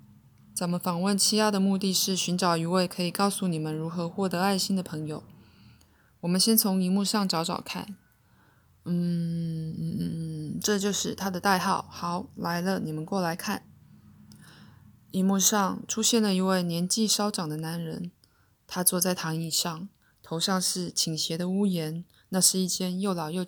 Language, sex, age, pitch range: Chinese, female, 20-39, 165-195 Hz